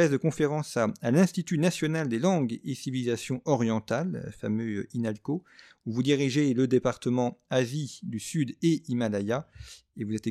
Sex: male